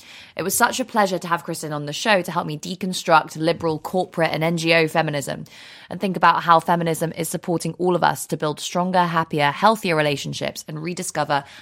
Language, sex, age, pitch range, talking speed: English, female, 20-39, 150-185 Hz, 195 wpm